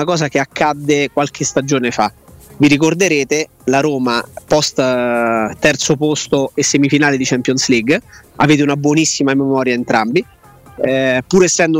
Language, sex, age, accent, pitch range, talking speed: Italian, male, 30-49, native, 130-155 Hz, 130 wpm